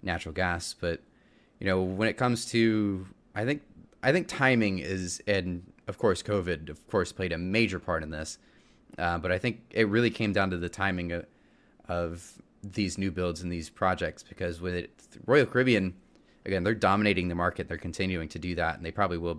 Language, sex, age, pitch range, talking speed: English, male, 20-39, 85-105 Hz, 200 wpm